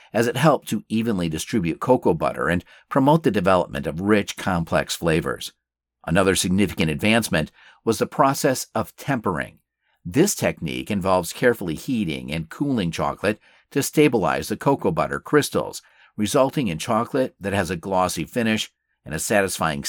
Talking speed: 150 wpm